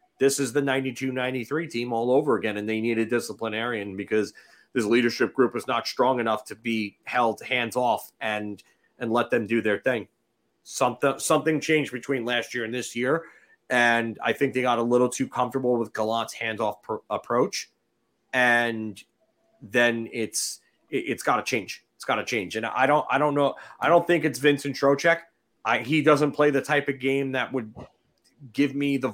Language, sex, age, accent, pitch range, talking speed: English, male, 30-49, American, 115-140 Hz, 195 wpm